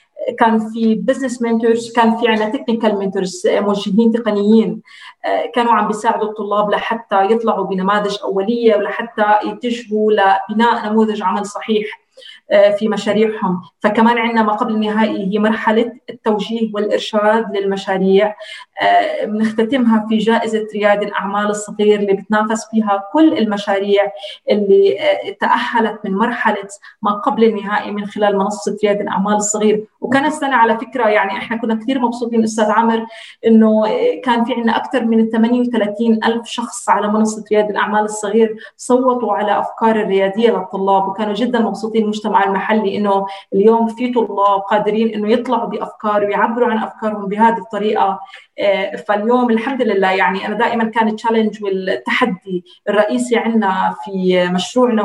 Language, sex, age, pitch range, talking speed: Arabic, female, 30-49, 200-230 Hz, 135 wpm